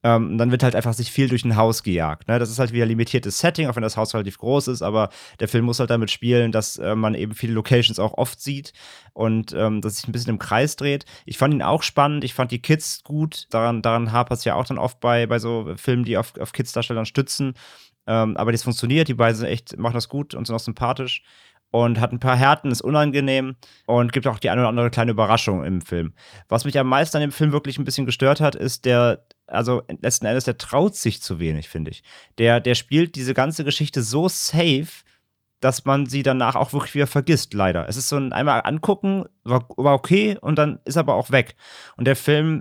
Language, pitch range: German, 115-140 Hz